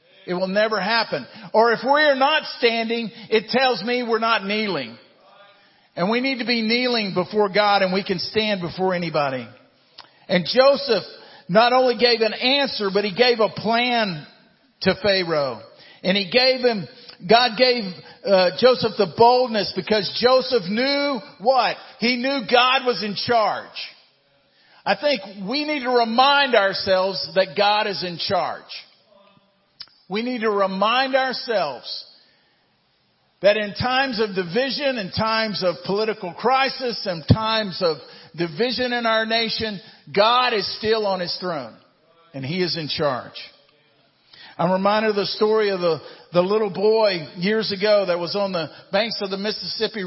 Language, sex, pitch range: English, male, 190-235 Hz